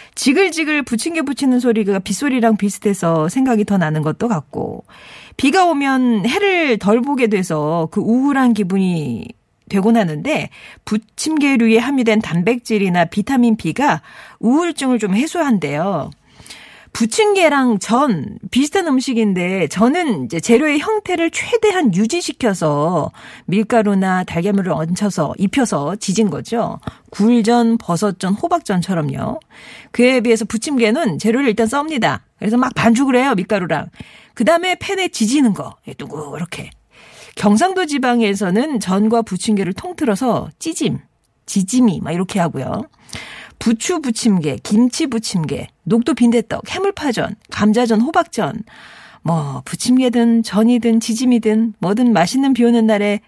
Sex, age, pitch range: female, 40-59, 195-260 Hz